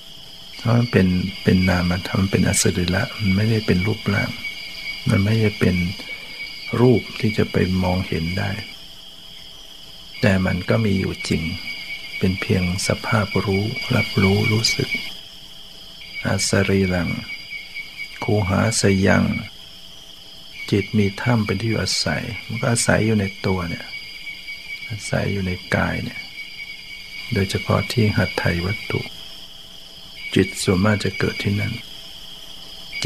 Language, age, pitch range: Thai, 60-79, 85-110 Hz